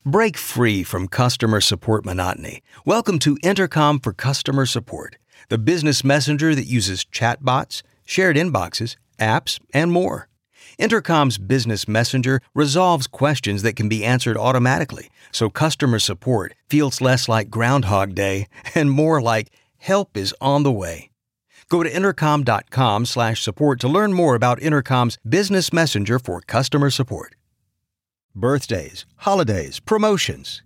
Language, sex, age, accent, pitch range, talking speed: English, male, 50-69, American, 105-145 Hz, 130 wpm